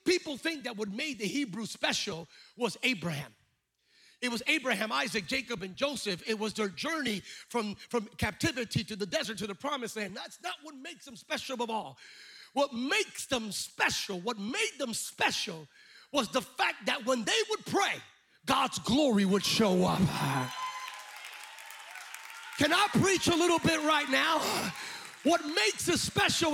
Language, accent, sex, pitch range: English, American, male, 235-360 Hz